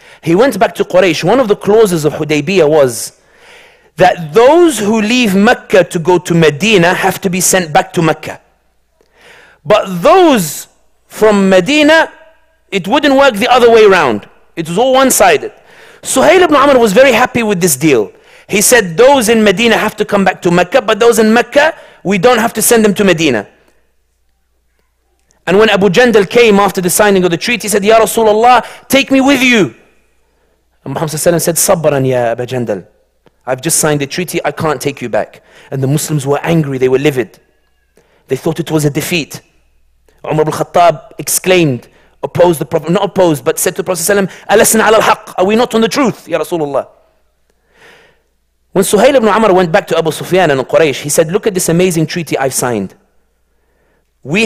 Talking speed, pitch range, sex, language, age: 190 wpm, 155-240 Hz, male, English, 40-59